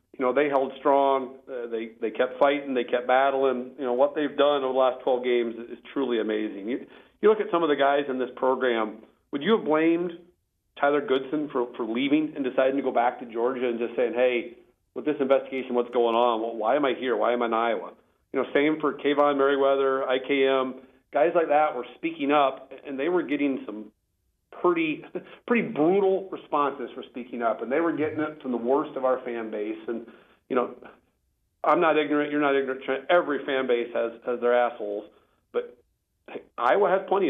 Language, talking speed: English, 210 wpm